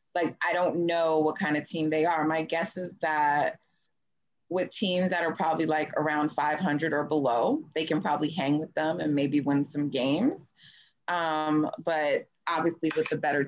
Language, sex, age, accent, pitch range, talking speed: English, female, 20-39, American, 145-170 Hz, 185 wpm